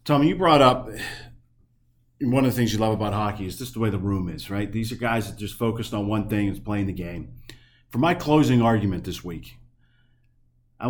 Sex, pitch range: male, 110-125 Hz